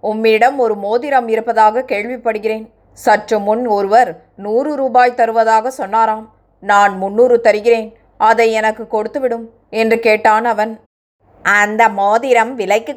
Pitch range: 215-240 Hz